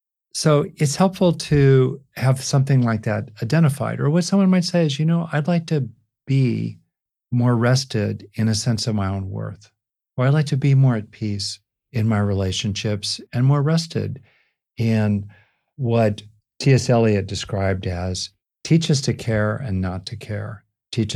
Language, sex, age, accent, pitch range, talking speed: English, male, 50-69, American, 105-140 Hz, 165 wpm